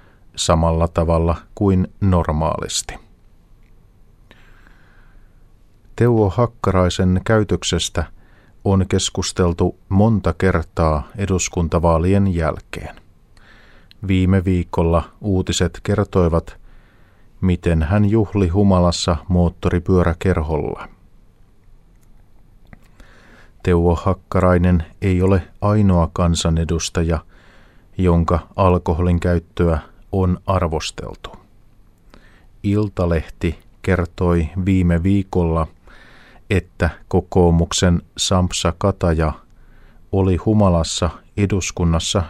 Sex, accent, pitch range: male, native, 85-100 Hz